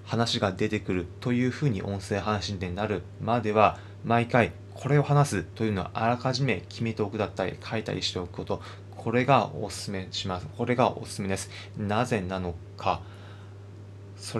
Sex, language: male, Japanese